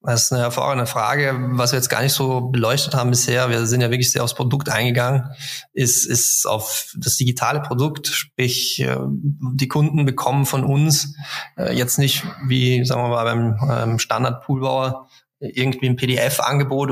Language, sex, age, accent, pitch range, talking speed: German, male, 20-39, German, 120-140 Hz, 165 wpm